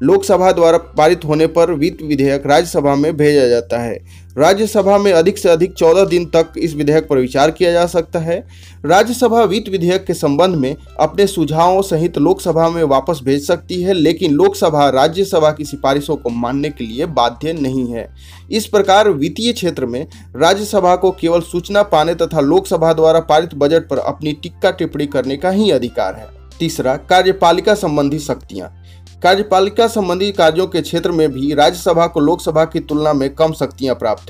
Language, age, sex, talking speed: Hindi, 30-49, male, 175 wpm